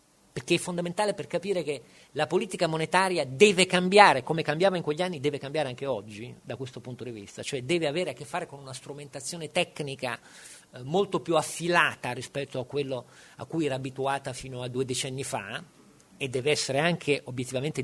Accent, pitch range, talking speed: native, 125-175 Hz, 190 wpm